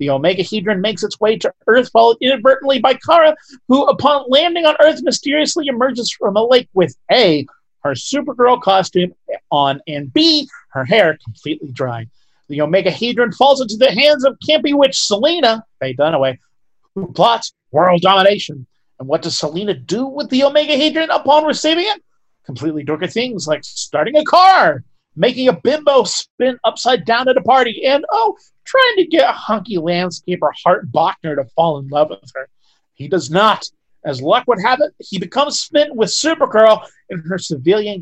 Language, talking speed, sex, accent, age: English, 175 wpm, male, American, 40-59